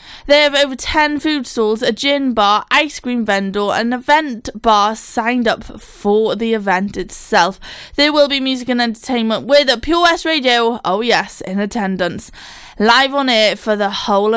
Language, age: English, 10-29